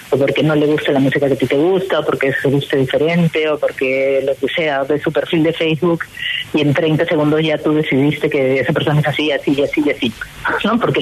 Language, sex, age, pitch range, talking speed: Spanish, female, 30-49, 150-185 Hz, 235 wpm